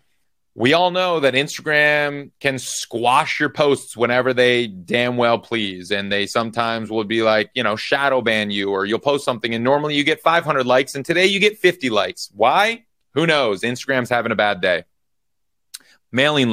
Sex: male